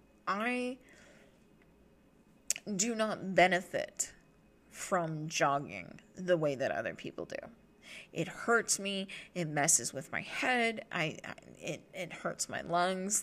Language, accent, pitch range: English, American, 175-270 Hz